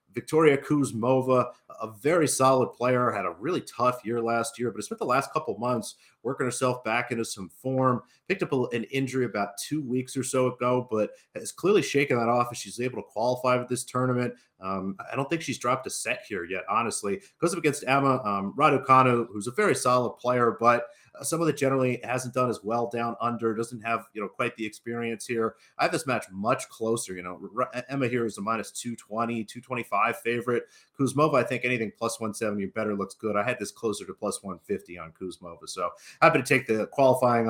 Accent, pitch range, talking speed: American, 110-130 Hz, 210 wpm